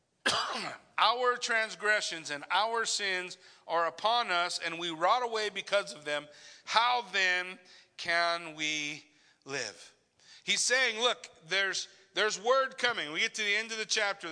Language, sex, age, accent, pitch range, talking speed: English, male, 40-59, American, 150-205 Hz, 145 wpm